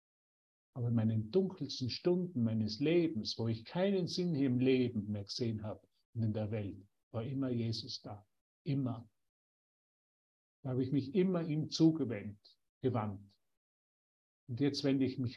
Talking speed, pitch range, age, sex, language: 150 wpm, 105-150 Hz, 50-69, male, German